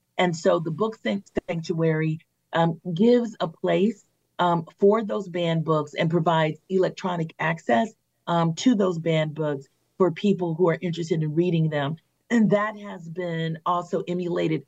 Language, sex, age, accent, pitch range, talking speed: English, female, 40-59, American, 160-185 Hz, 150 wpm